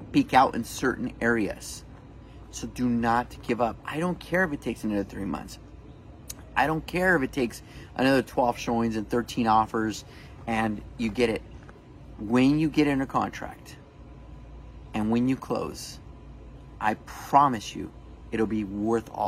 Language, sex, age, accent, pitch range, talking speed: English, male, 30-49, American, 105-125 Hz, 160 wpm